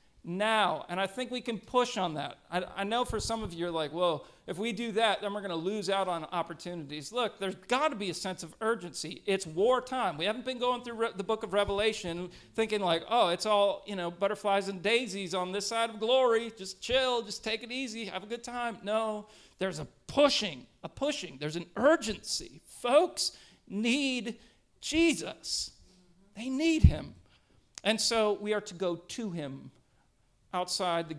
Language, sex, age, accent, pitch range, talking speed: English, male, 40-59, American, 170-225 Hz, 200 wpm